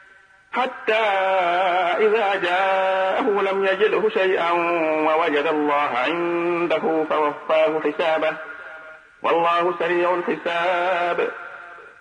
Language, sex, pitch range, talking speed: Arabic, male, 155-195 Hz, 70 wpm